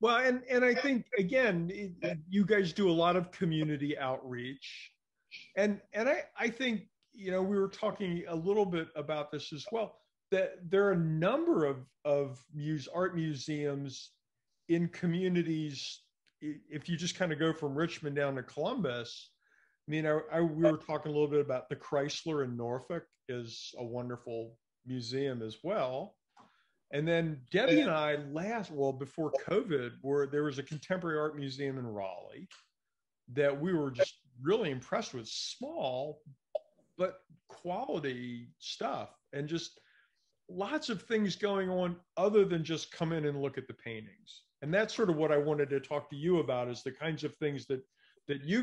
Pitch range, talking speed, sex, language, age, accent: 135-180 Hz, 175 wpm, male, English, 50-69, American